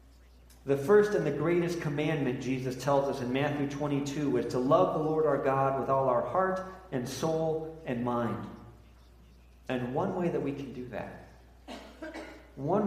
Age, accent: 40-59, American